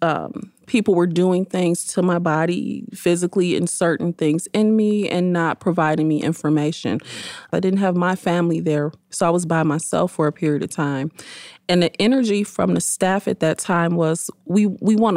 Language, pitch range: English, 160-190 Hz